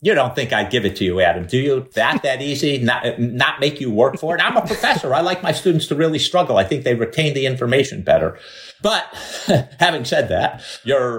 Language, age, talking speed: English, 50-69, 230 wpm